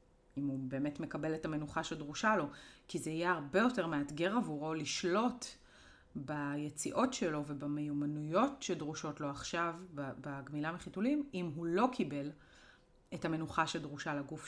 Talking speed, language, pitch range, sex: 135 wpm, Hebrew, 150-205 Hz, female